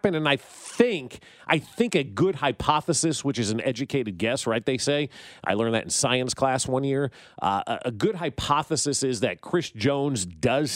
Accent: American